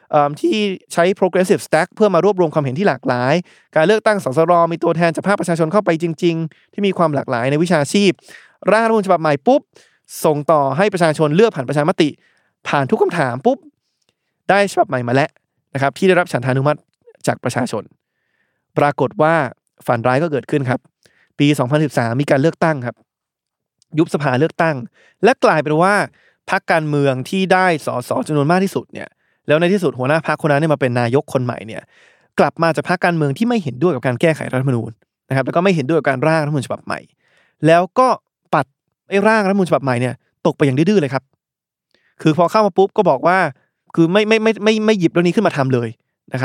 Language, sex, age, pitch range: Thai, male, 20-39, 140-180 Hz